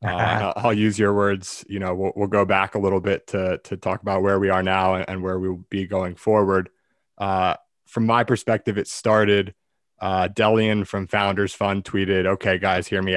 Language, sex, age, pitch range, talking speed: English, male, 20-39, 95-100 Hz, 200 wpm